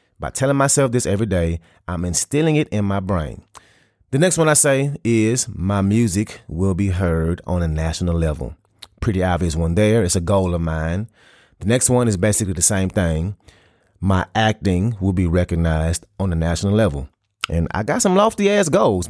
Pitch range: 90-120 Hz